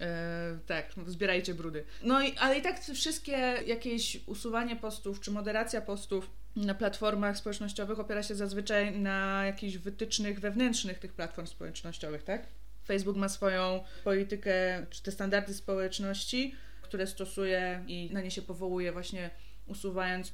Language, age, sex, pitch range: Polish, 20-39, female, 190-230 Hz